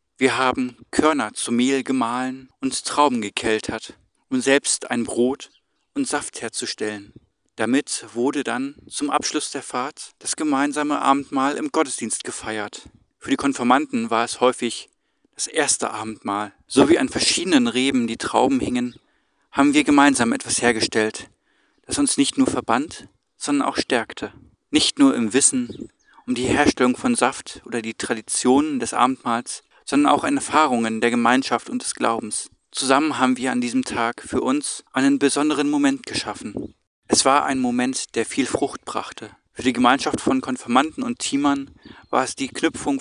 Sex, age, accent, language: male, 40-59, German, German